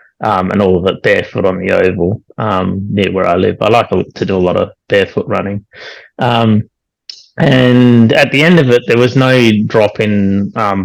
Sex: male